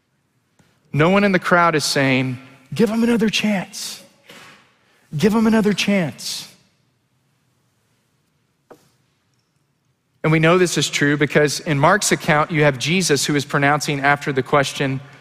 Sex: male